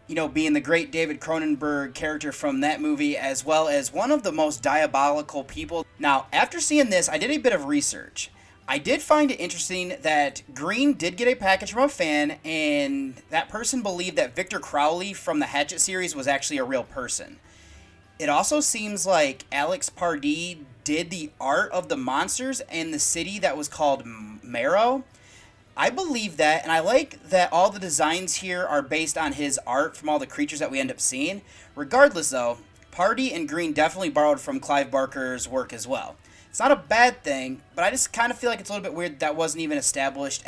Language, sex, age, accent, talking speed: English, male, 30-49, American, 205 wpm